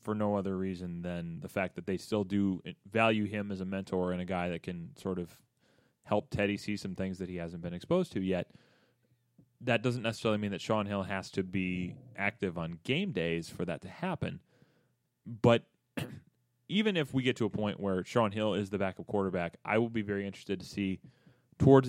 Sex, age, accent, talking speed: male, 30-49, American, 210 wpm